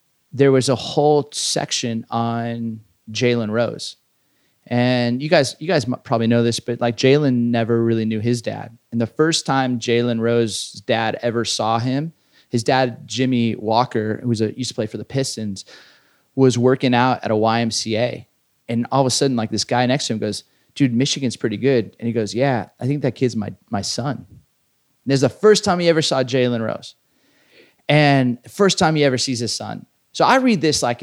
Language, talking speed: English, 200 wpm